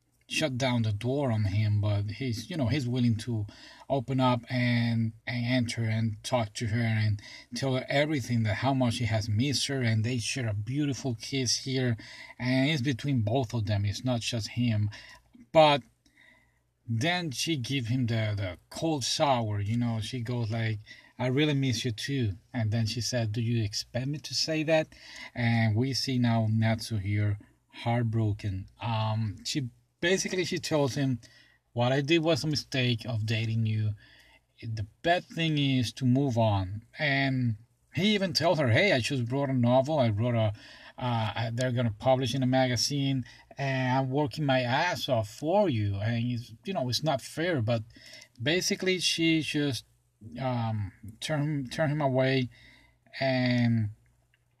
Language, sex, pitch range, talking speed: English, male, 115-135 Hz, 170 wpm